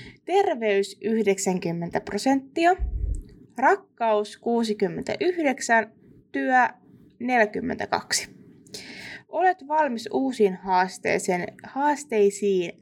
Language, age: Finnish, 20-39